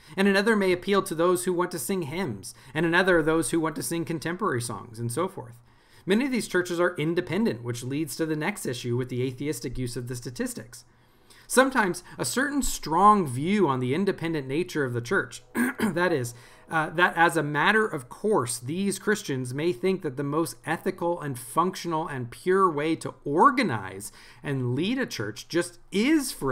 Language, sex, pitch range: English, male, 130-180 Hz